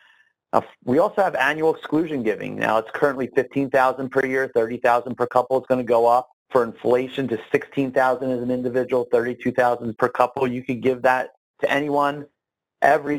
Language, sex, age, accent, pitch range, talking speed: English, male, 30-49, American, 120-145 Hz, 170 wpm